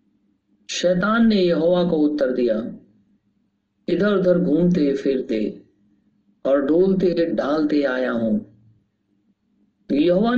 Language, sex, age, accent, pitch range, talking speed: Hindi, male, 50-69, native, 130-195 Hz, 95 wpm